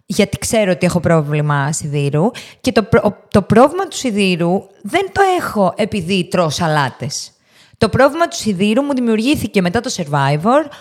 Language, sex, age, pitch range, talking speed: Greek, female, 20-39, 180-260 Hz, 145 wpm